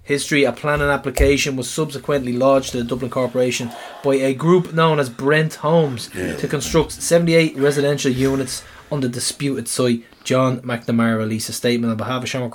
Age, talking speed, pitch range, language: 20-39, 170 wpm, 125-150 Hz, English